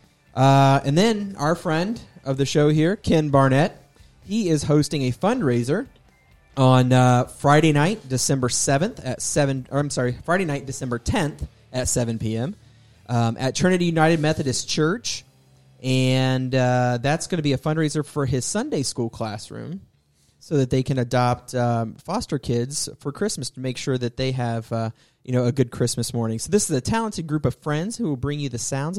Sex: male